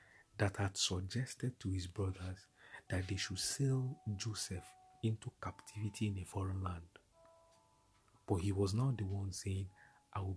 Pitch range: 95-120 Hz